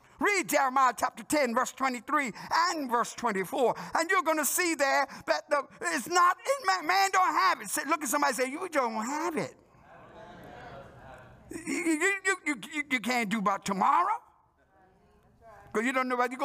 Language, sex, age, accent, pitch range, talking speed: English, male, 60-79, American, 240-325 Hz, 180 wpm